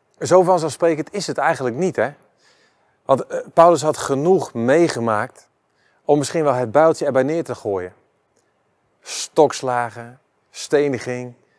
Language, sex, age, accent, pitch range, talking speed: Dutch, male, 40-59, Dutch, 115-145 Hz, 120 wpm